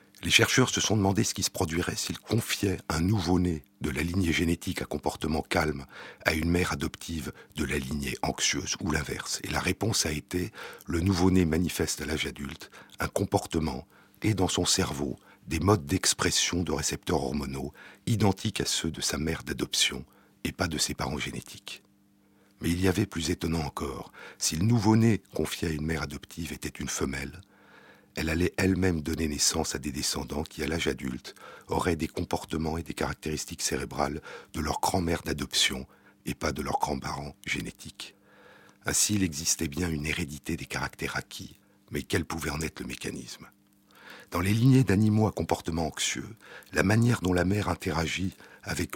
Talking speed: 175 wpm